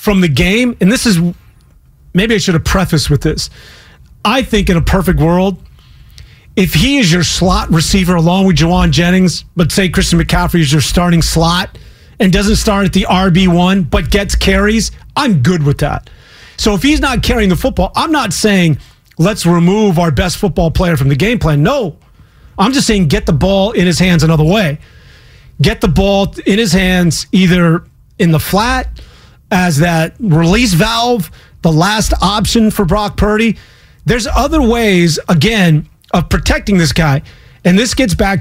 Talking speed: 180 wpm